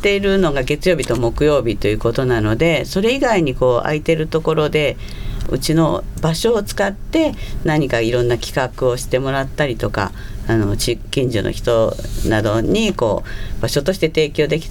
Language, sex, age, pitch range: Japanese, female, 50-69, 110-160 Hz